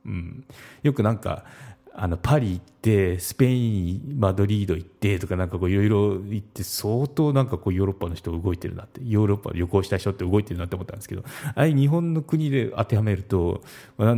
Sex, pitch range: male, 90-125 Hz